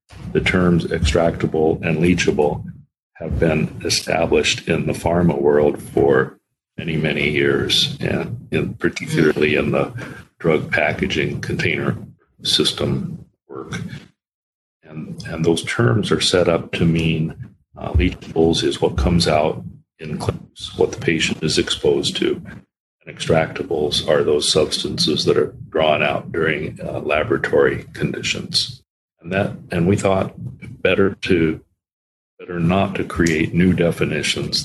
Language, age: English, 40-59